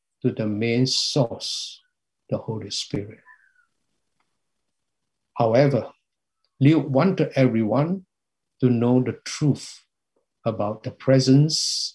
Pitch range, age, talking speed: 125-160 Hz, 60-79, 85 wpm